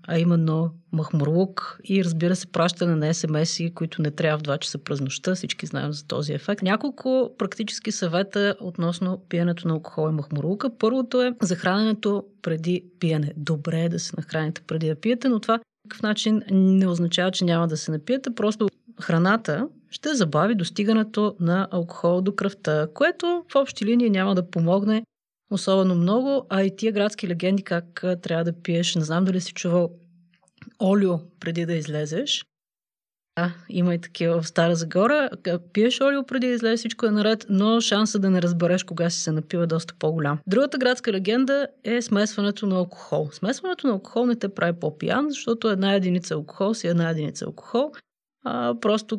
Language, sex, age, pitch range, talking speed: Bulgarian, female, 30-49, 170-215 Hz, 175 wpm